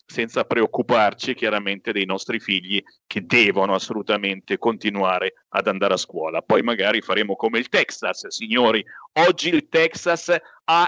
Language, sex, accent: Italian, male, native